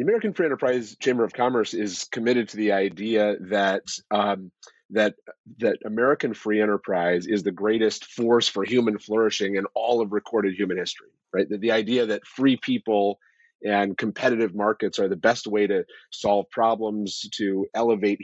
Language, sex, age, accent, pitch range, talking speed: English, male, 30-49, American, 100-120 Hz, 170 wpm